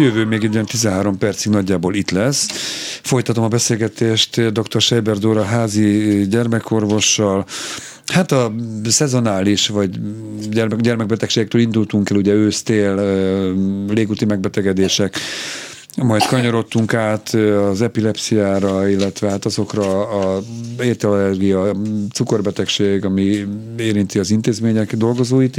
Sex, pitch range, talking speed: male, 100-115 Hz, 105 wpm